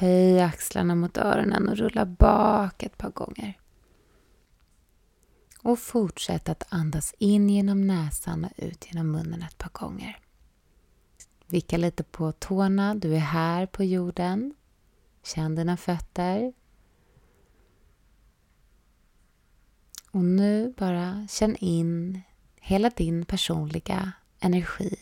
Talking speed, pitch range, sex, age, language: 110 wpm, 155-205 Hz, female, 20-39, Swedish